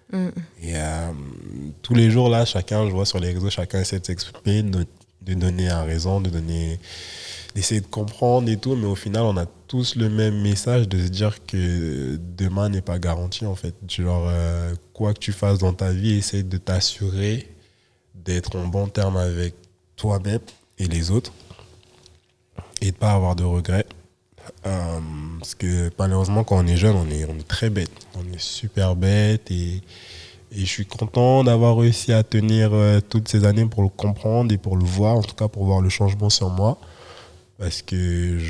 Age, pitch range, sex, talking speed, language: 20-39, 90-105 Hz, male, 190 wpm, French